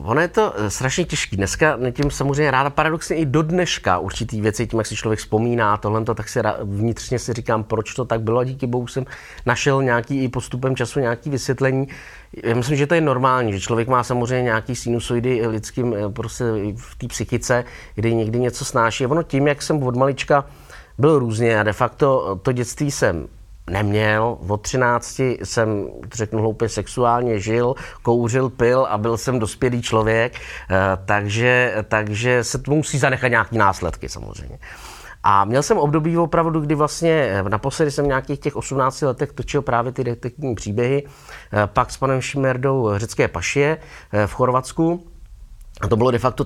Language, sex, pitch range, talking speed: Czech, male, 110-135 Hz, 165 wpm